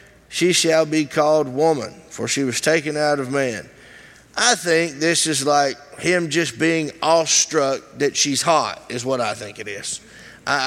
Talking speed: 175 wpm